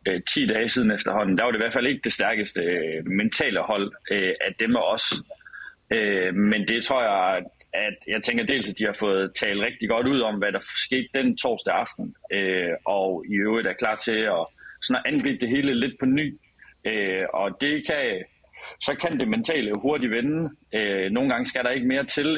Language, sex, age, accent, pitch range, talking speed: Danish, male, 30-49, native, 105-150 Hz, 195 wpm